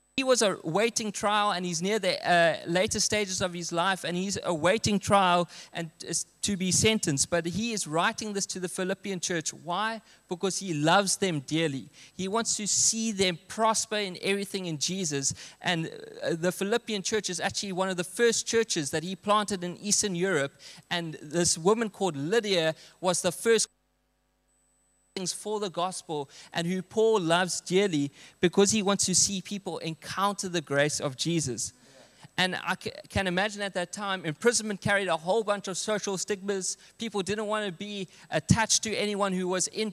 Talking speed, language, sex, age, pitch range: 175 wpm, English, male, 20-39, 170-210 Hz